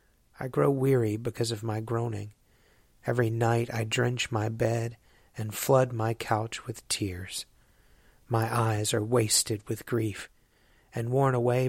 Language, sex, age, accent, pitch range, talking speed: English, male, 40-59, American, 110-130 Hz, 145 wpm